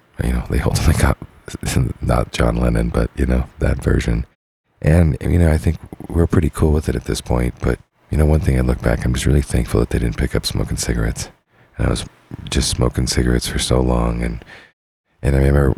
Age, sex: 40-59, male